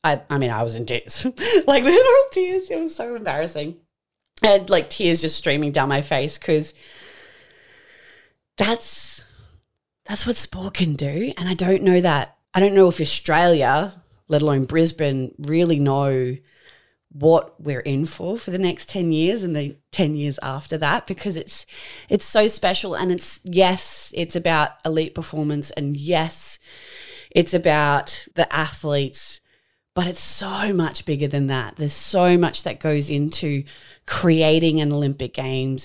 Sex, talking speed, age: female, 160 wpm, 20-39